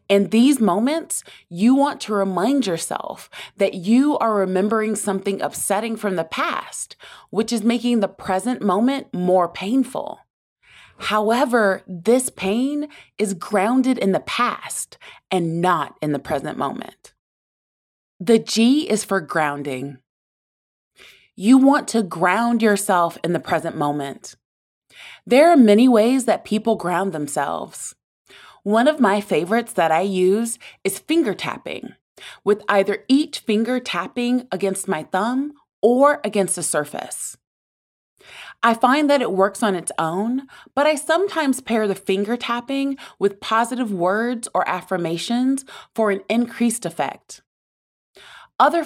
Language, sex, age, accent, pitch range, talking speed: English, female, 20-39, American, 185-250 Hz, 135 wpm